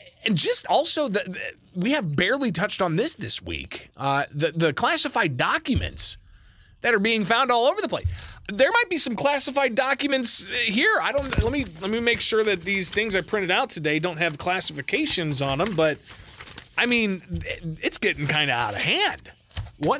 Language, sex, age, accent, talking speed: English, male, 30-49, American, 195 wpm